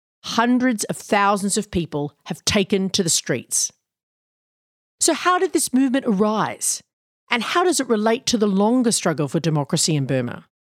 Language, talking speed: English, 165 wpm